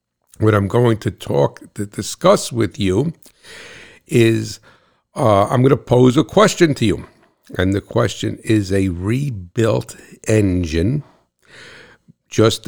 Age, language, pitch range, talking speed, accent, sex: 60-79, English, 95-115 Hz, 130 wpm, American, male